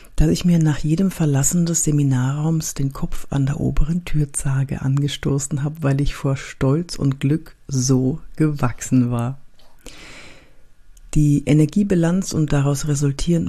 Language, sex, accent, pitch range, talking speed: German, female, German, 135-160 Hz, 135 wpm